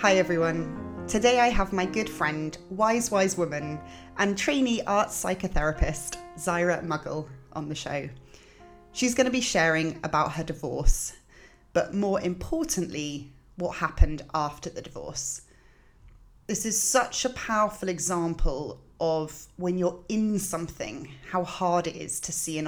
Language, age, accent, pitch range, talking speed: English, 30-49, British, 155-185 Hz, 140 wpm